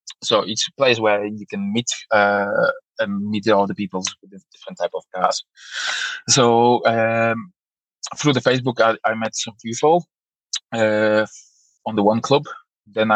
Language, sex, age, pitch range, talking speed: English, male, 20-39, 105-125 Hz, 165 wpm